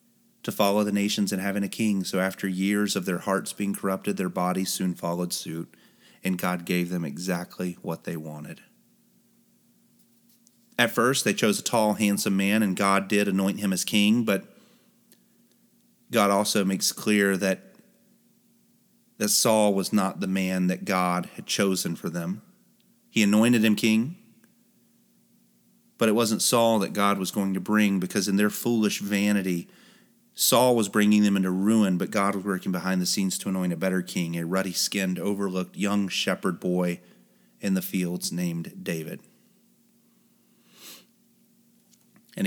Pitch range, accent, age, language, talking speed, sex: 95-110 Hz, American, 30-49, English, 155 wpm, male